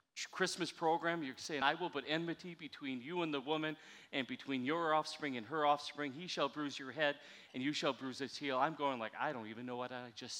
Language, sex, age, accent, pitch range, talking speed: English, male, 40-59, American, 135-170 Hz, 235 wpm